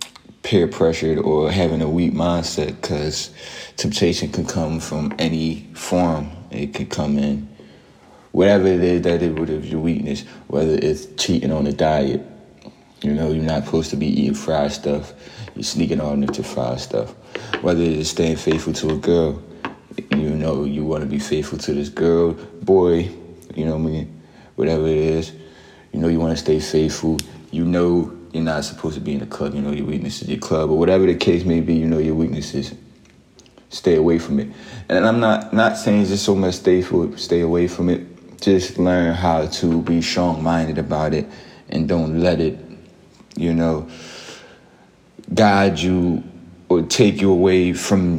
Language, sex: English, male